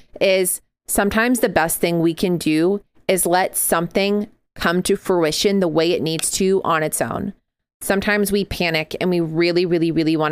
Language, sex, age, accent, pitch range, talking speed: English, female, 30-49, American, 160-185 Hz, 180 wpm